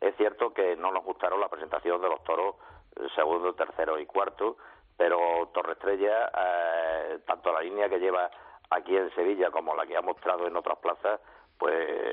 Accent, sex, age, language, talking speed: Spanish, male, 50-69, Spanish, 180 wpm